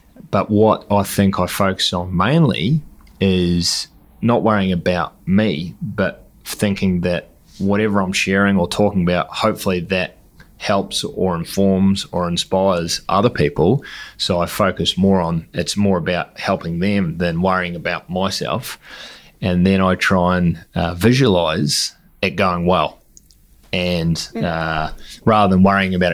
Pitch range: 85-100 Hz